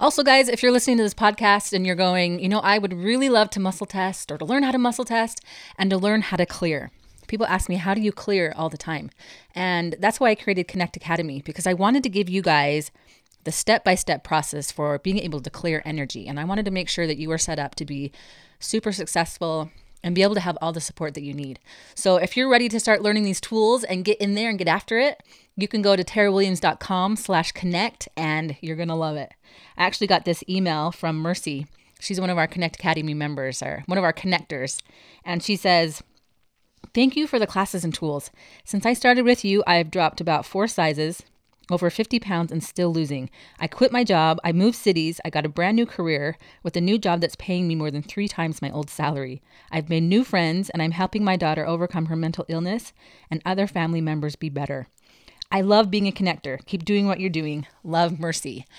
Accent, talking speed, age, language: American, 230 wpm, 30-49, English